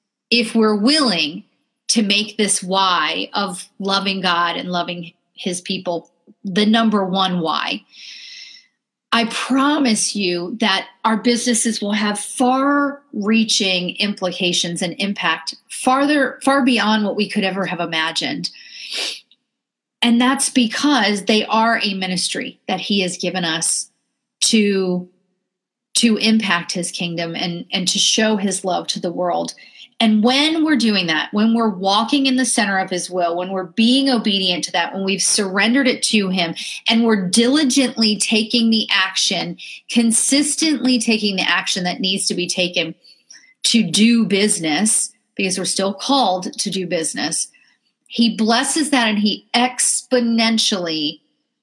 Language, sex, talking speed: English, female, 145 wpm